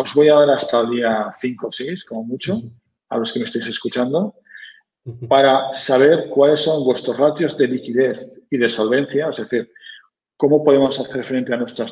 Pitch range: 120-145 Hz